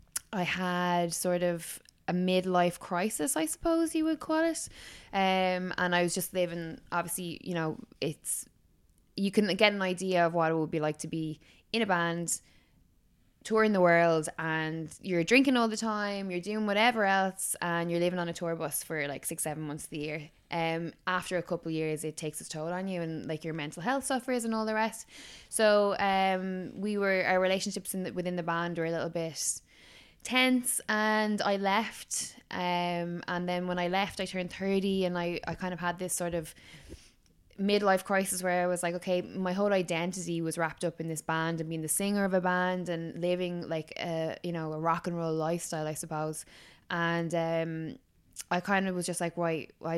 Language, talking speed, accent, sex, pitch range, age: English, 205 wpm, Irish, female, 165-195 Hz, 10-29